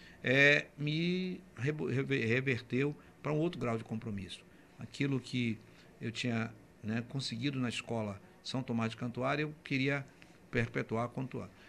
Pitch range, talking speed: 115-145 Hz, 140 wpm